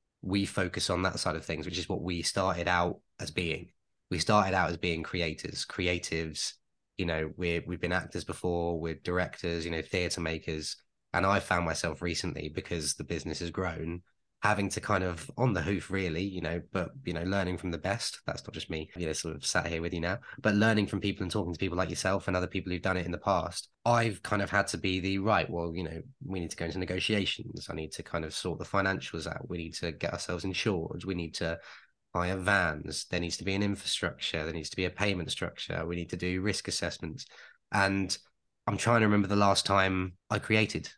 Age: 20-39